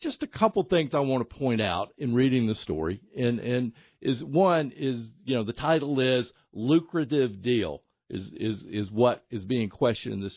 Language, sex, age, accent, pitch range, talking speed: English, male, 50-69, American, 105-145 Hz, 195 wpm